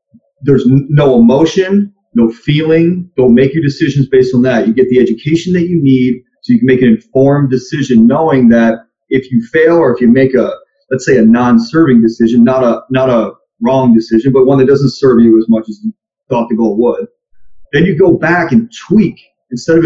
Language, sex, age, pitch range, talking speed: English, male, 30-49, 120-180 Hz, 210 wpm